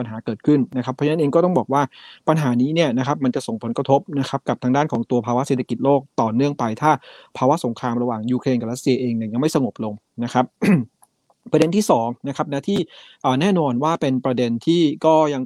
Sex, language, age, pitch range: male, Thai, 20-39, 120-150 Hz